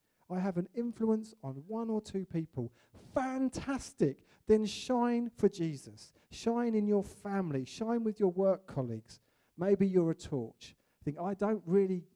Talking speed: 155 wpm